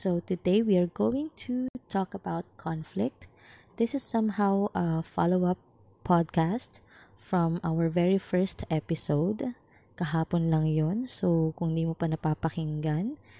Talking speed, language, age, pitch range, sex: 130 wpm, Filipino, 20-39, 155-190 Hz, female